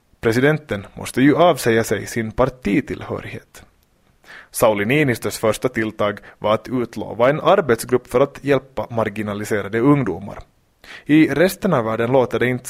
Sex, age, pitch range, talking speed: male, 20-39, 105-125 Hz, 130 wpm